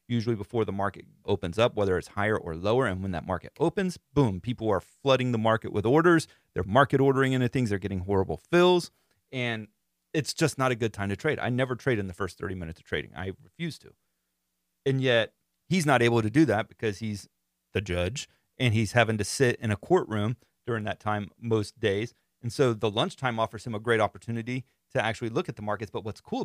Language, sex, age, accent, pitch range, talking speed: English, male, 30-49, American, 100-125 Hz, 220 wpm